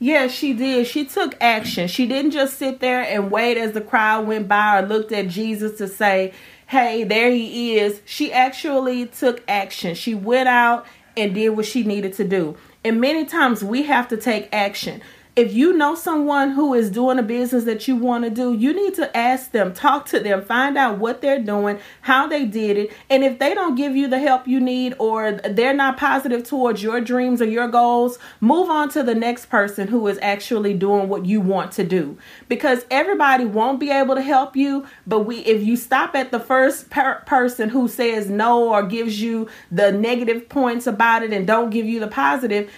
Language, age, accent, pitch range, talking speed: English, 40-59, American, 215-265 Hz, 210 wpm